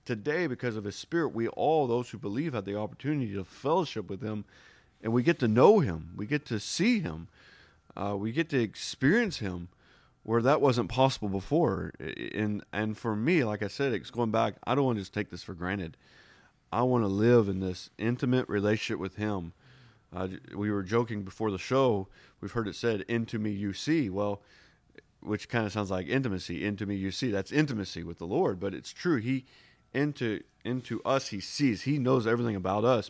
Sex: male